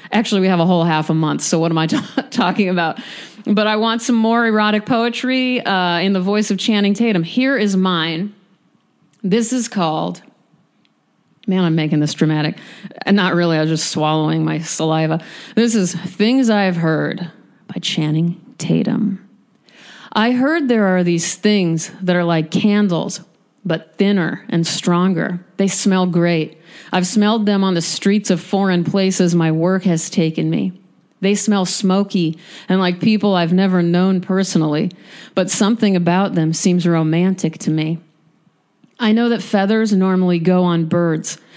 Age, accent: 40-59, American